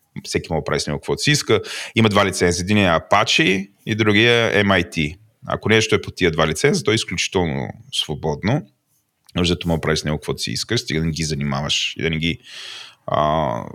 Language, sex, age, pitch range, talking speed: Bulgarian, male, 30-49, 85-110 Hz, 215 wpm